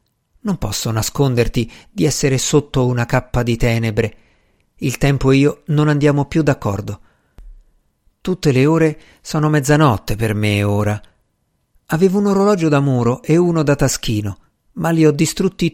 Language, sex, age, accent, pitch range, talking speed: Italian, male, 50-69, native, 115-155 Hz, 150 wpm